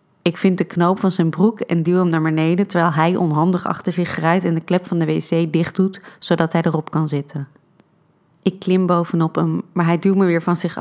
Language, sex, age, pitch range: Dutch, female, 30-49, 165-185 Hz